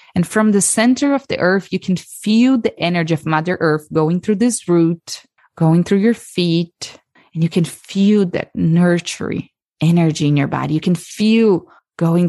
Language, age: English, 20-39